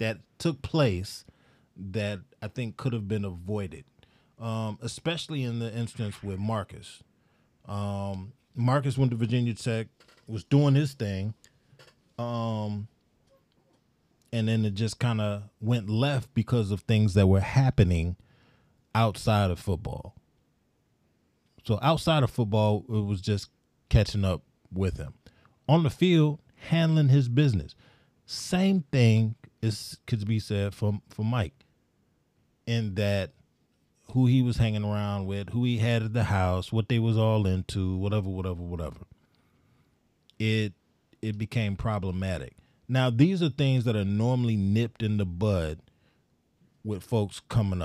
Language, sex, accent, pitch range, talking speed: English, male, American, 100-125 Hz, 140 wpm